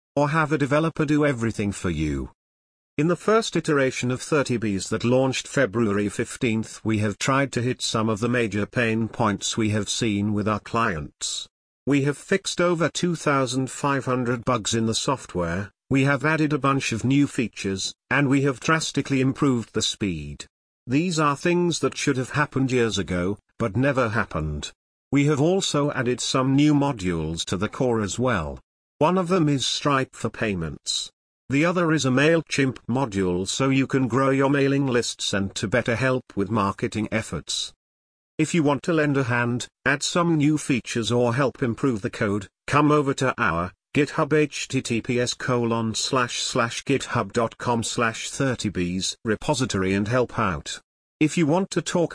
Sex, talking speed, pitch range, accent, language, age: male, 165 wpm, 110-145 Hz, British, English, 50-69